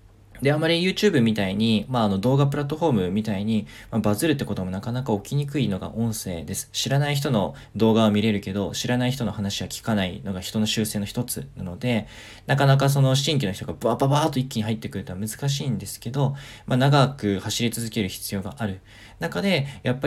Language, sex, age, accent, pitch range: Japanese, male, 20-39, native, 105-140 Hz